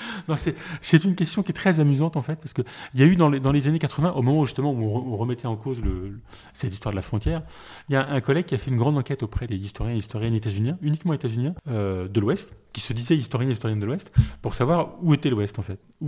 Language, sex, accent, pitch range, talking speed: French, male, French, 110-150 Hz, 295 wpm